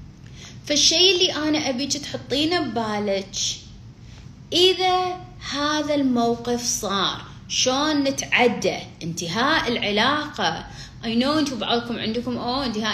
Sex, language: female, Arabic